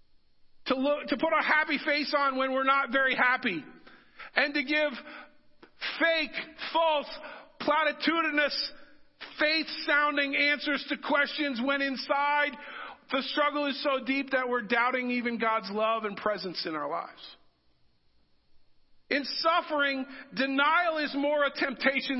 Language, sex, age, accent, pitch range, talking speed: English, male, 50-69, American, 255-310 Hz, 125 wpm